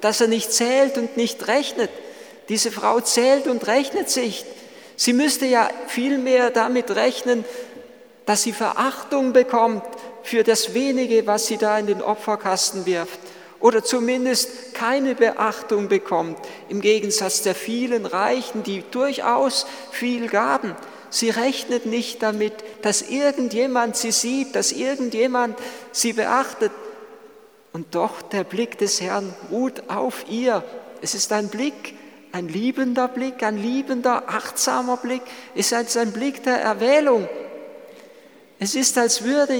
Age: 50-69